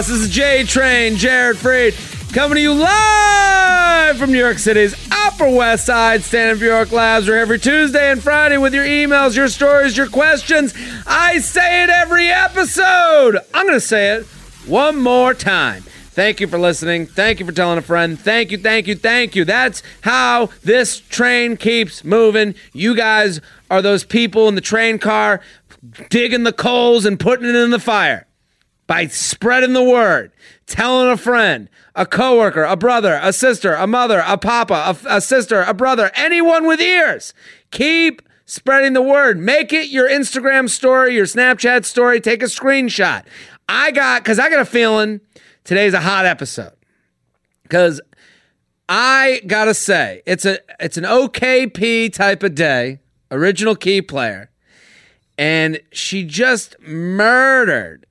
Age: 30-49